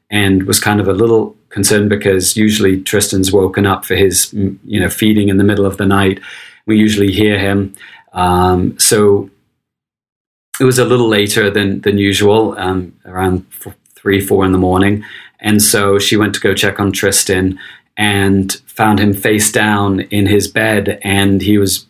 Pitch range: 95-105 Hz